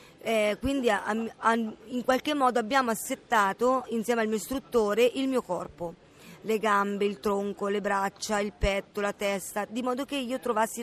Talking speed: 160 wpm